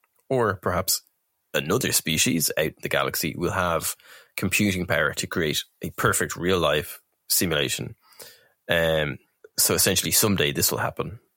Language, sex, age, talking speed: English, male, 20-39, 130 wpm